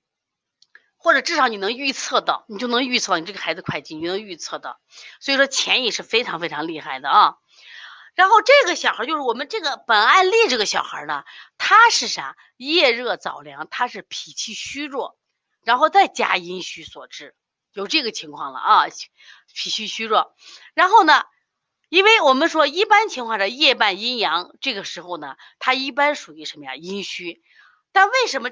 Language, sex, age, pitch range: Chinese, female, 30-49, 195-330 Hz